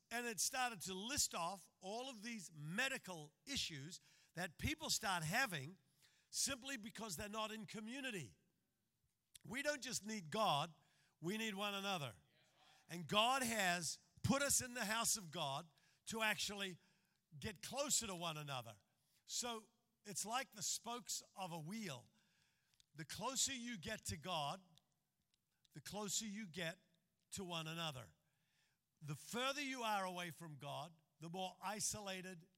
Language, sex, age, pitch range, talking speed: English, male, 50-69, 160-215 Hz, 145 wpm